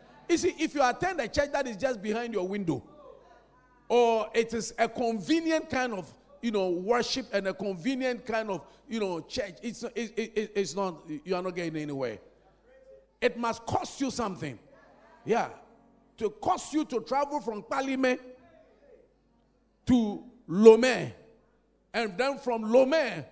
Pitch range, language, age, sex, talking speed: 175-230 Hz, English, 50-69, male, 155 wpm